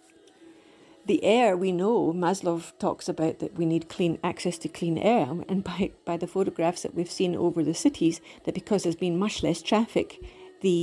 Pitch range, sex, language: 165-205 Hz, female, English